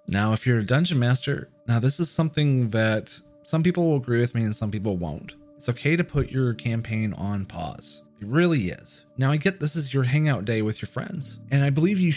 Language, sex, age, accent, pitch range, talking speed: English, male, 30-49, American, 115-150 Hz, 230 wpm